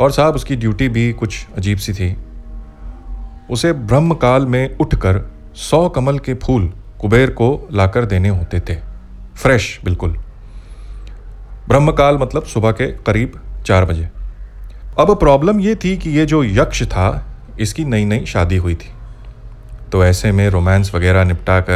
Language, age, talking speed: Hindi, 30-49, 150 wpm